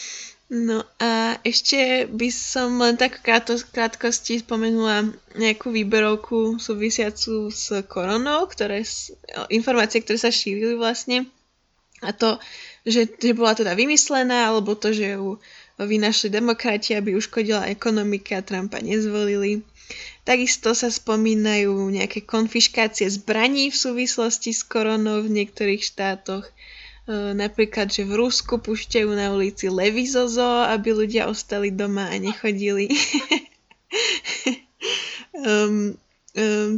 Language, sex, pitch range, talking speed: Slovak, female, 210-250 Hz, 115 wpm